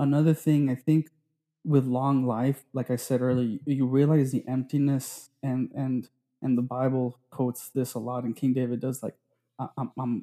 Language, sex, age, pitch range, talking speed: English, male, 20-39, 125-150 Hz, 175 wpm